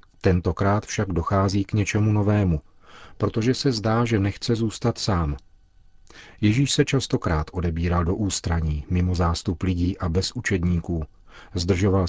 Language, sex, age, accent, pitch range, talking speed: Czech, male, 40-59, native, 90-105 Hz, 130 wpm